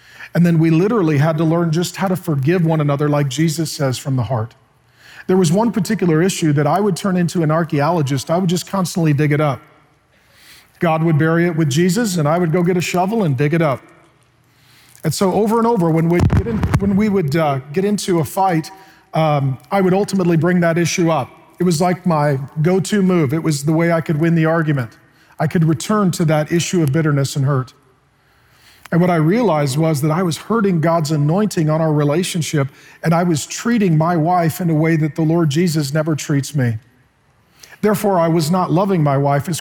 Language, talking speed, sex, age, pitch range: English, 215 wpm, male, 40-59, 145-175 Hz